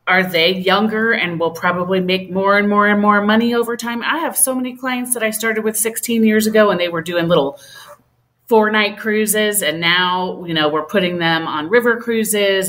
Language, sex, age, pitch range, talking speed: English, female, 30-49, 155-215 Hz, 210 wpm